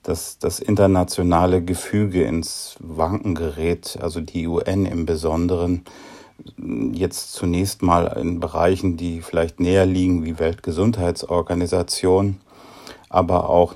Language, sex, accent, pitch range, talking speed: German, male, German, 85-95 Hz, 110 wpm